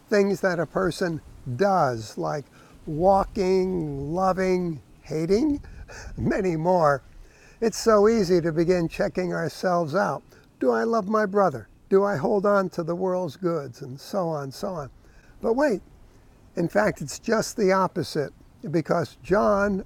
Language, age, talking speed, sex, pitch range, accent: English, 60-79, 140 wpm, male, 155-200 Hz, American